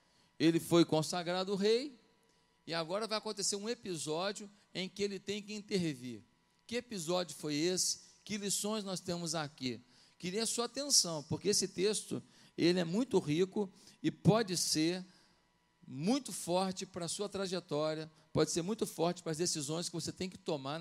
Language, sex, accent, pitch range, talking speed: Portuguese, male, Brazilian, 160-210 Hz, 160 wpm